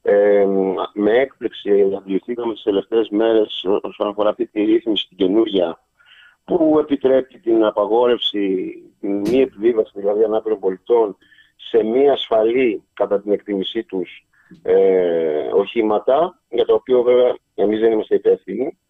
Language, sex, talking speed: Greek, male, 125 wpm